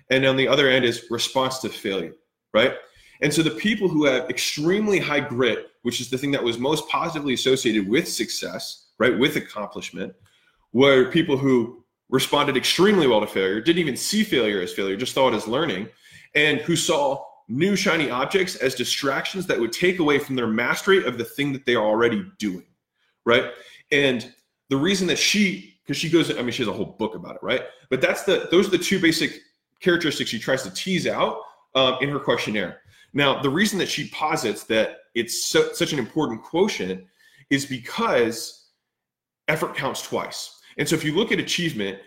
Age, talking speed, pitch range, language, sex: 20-39, 195 wpm, 120-165 Hz, English, male